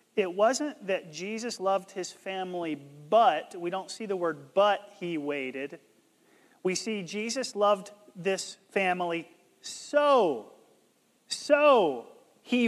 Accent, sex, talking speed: American, male, 120 wpm